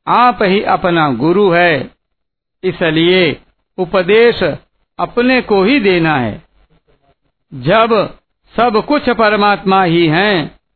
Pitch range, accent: 160-210 Hz, native